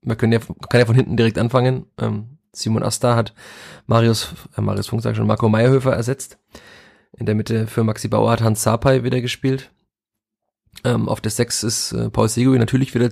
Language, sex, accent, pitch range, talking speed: German, male, German, 110-125 Hz, 180 wpm